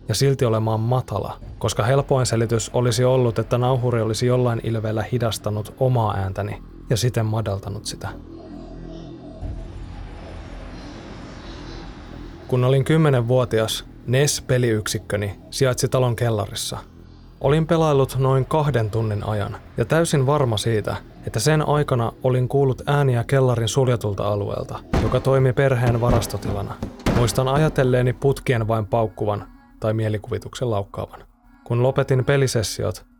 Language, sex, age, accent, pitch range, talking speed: Finnish, male, 20-39, native, 110-130 Hz, 110 wpm